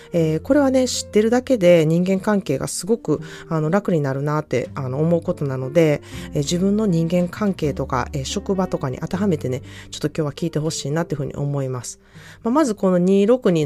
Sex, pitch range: female, 145-215 Hz